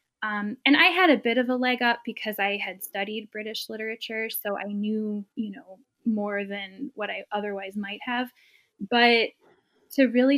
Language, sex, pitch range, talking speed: English, female, 200-245 Hz, 180 wpm